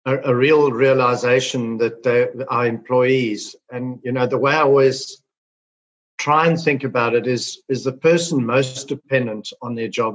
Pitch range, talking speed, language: 120-145 Hz, 160 wpm, English